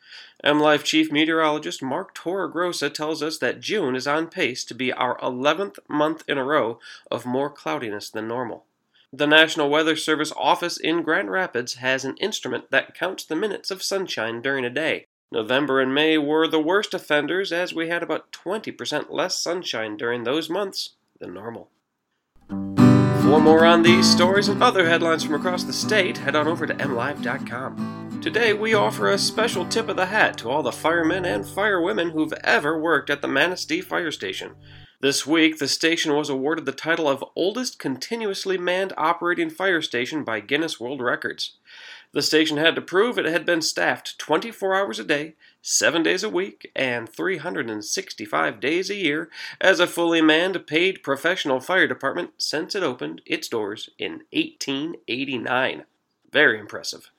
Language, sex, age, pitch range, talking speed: English, male, 30-49, 145-185 Hz, 170 wpm